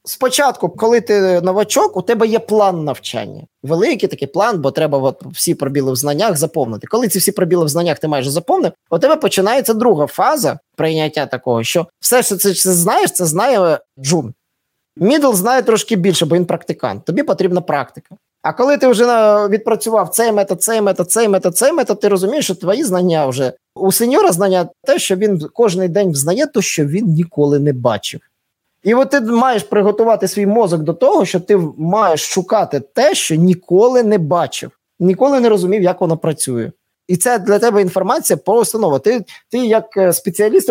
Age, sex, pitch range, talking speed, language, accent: 20-39, male, 170-220 Hz, 180 wpm, Russian, native